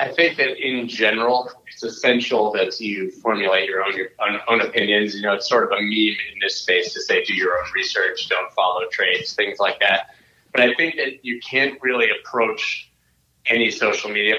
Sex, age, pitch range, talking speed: male, 30-49, 100-125 Hz, 200 wpm